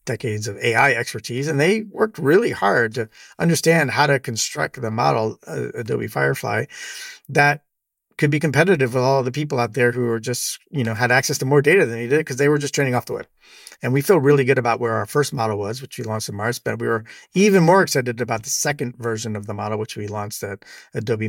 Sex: male